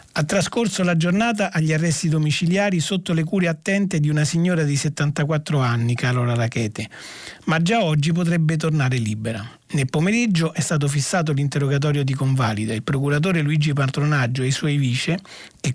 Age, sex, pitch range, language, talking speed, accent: 40-59, male, 135-170 Hz, Italian, 160 wpm, native